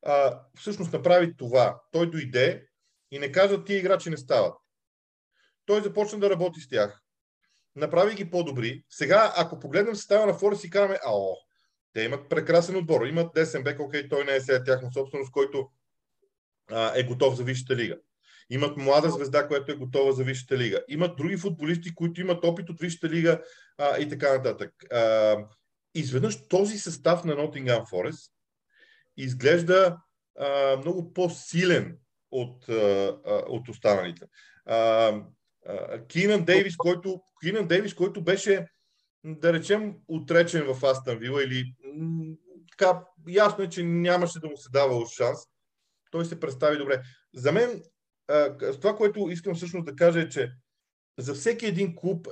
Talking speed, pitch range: 150 wpm, 135-180 Hz